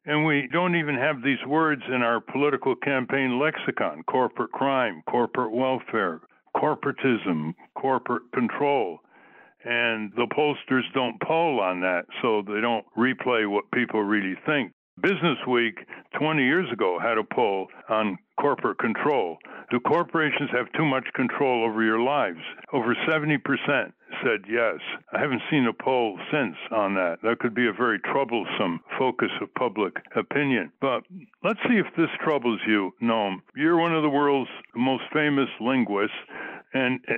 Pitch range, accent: 115-145 Hz, American